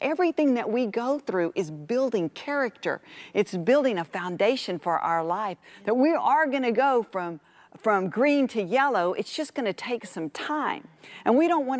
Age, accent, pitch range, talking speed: 40-59, American, 175-255 Hz, 190 wpm